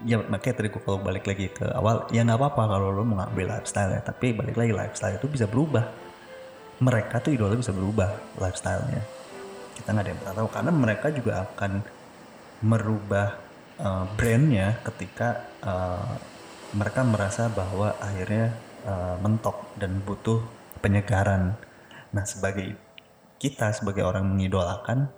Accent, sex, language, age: native, male, Indonesian, 20-39